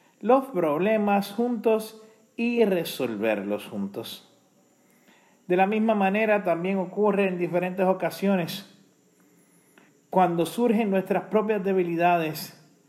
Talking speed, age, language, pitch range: 95 wpm, 40-59, Spanish, 165-215 Hz